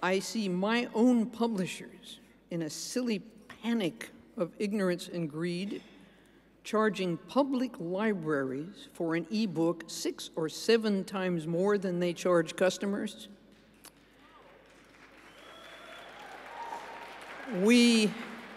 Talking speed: 95 wpm